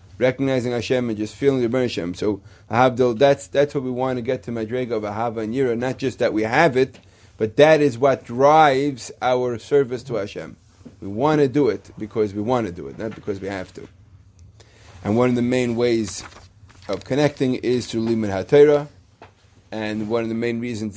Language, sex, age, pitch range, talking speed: English, male, 30-49, 100-125 Hz, 200 wpm